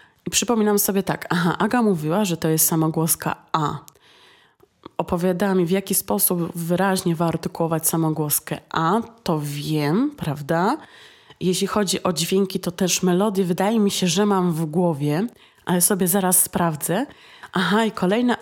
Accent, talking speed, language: native, 145 wpm, Polish